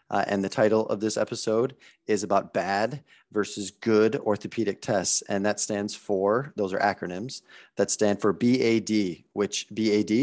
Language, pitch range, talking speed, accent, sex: English, 100-115 Hz, 160 wpm, American, male